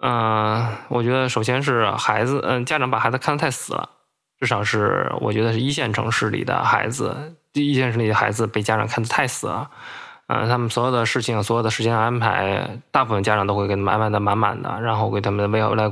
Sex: male